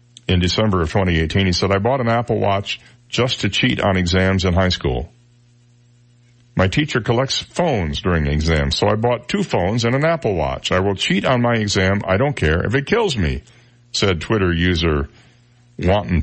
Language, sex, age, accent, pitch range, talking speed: English, male, 60-79, American, 90-120 Hz, 190 wpm